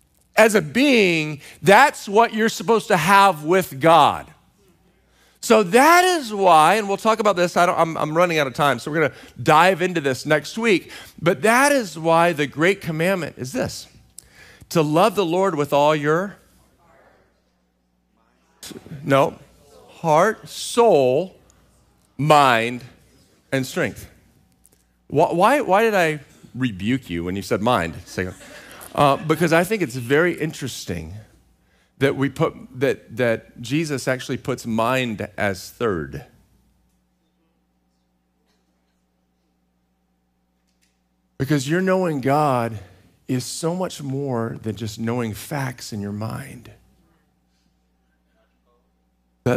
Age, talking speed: 40-59, 125 wpm